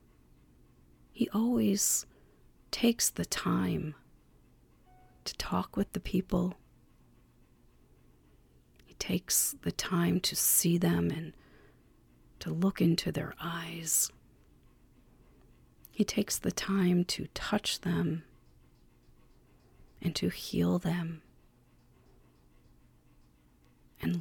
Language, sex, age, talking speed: English, female, 40-59, 85 wpm